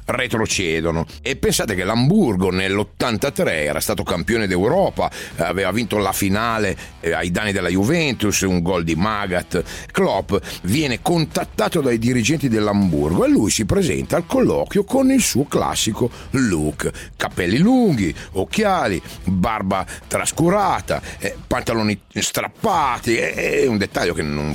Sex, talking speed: male, 125 wpm